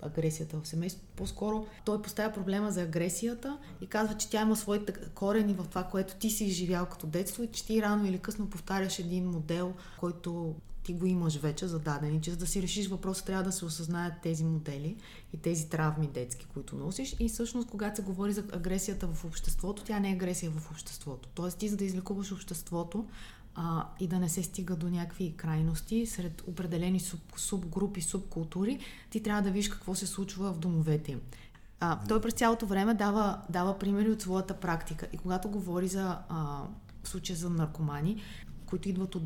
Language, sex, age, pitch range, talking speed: Bulgarian, female, 20-39, 170-200 Hz, 190 wpm